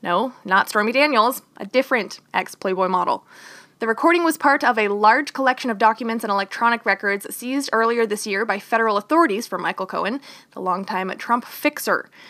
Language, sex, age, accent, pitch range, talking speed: English, female, 20-39, American, 210-270 Hz, 170 wpm